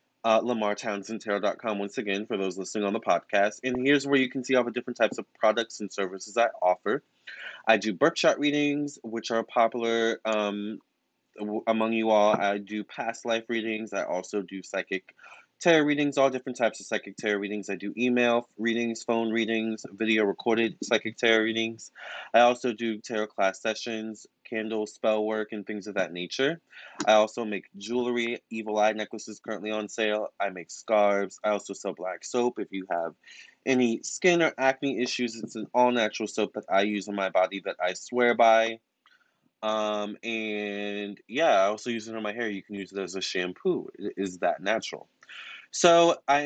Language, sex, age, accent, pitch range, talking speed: English, male, 20-39, American, 105-120 Hz, 185 wpm